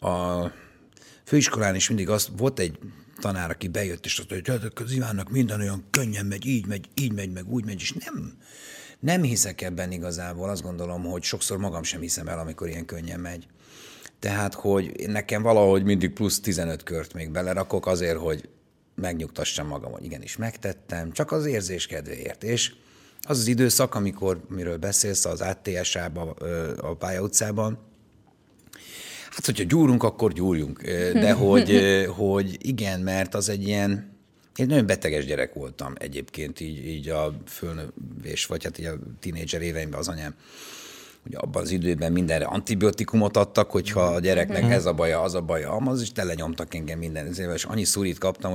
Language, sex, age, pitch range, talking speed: Hungarian, male, 50-69, 85-105 Hz, 165 wpm